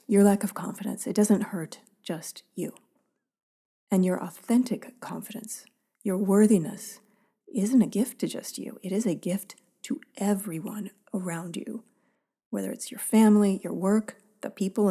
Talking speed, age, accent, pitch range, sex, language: 150 wpm, 40-59, American, 185-230 Hz, female, English